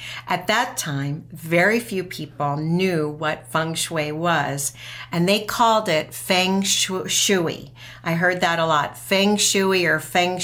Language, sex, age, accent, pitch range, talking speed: English, female, 50-69, American, 140-170 Hz, 150 wpm